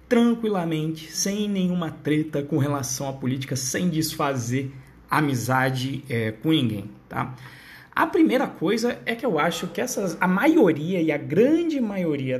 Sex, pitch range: male, 155-225 Hz